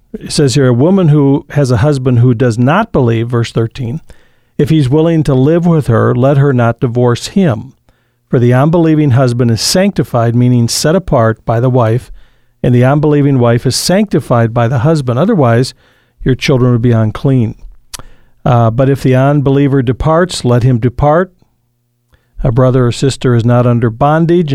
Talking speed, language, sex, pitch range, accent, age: 175 wpm, English, male, 120-150 Hz, American, 50-69